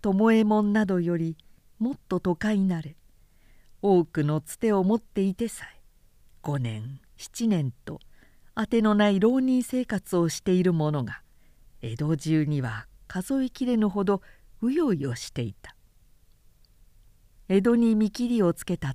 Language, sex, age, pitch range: Japanese, female, 50-69, 135-215 Hz